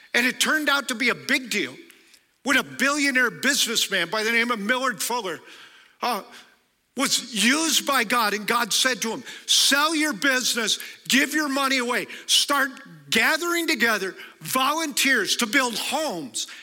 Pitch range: 225-290 Hz